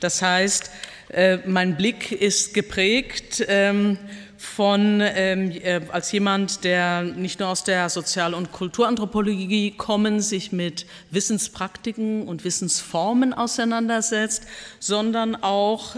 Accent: German